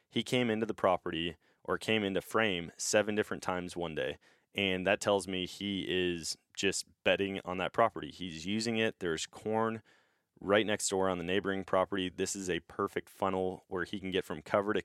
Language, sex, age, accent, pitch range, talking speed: English, male, 20-39, American, 85-100 Hz, 200 wpm